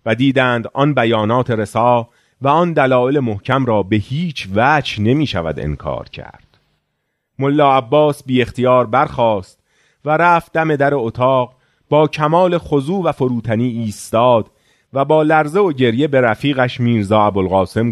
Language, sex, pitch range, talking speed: Persian, male, 110-155 Hz, 135 wpm